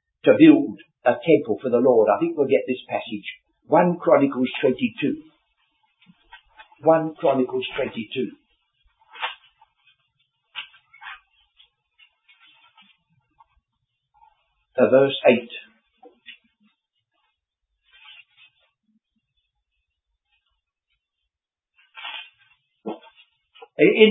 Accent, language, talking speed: British, English, 45 wpm